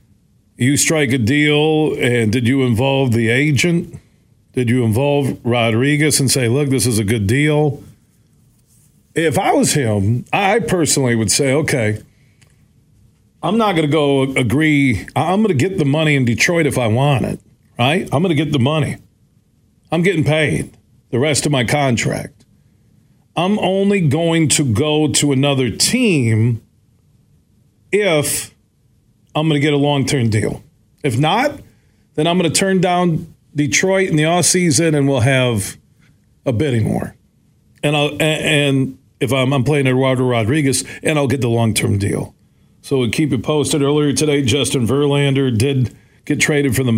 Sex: male